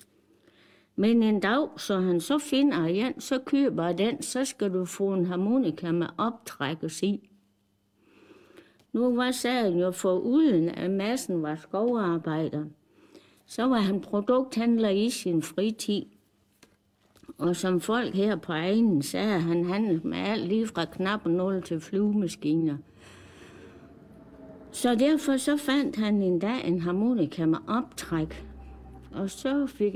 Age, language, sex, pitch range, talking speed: 60-79, Danish, female, 160-240 Hz, 135 wpm